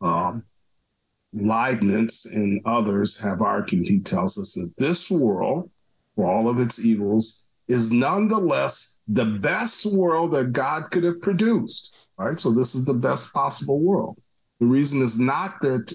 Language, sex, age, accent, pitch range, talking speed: English, male, 50-69, American, 110-175 Hz, 150 wpm